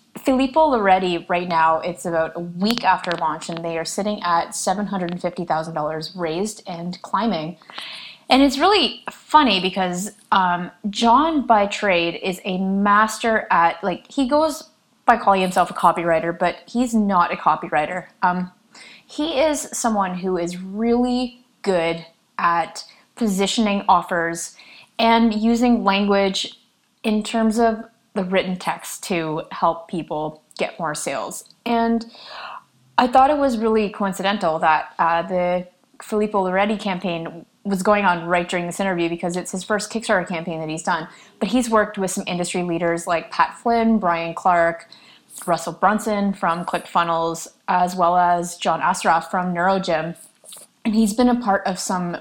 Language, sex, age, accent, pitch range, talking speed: English, female, 20-39, American, 170-220 Hz, 150 wpm